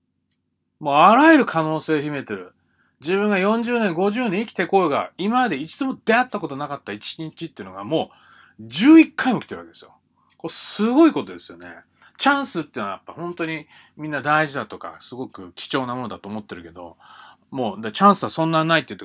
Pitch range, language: 140-215 Hz, Japanese